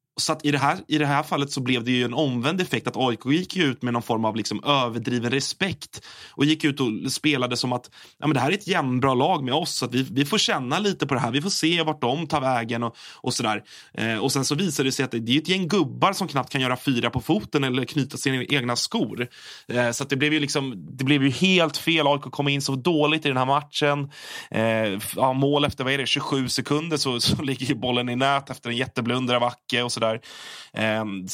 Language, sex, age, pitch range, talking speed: Swedish, male, 20-39, 120-150 Hz, 260 wpm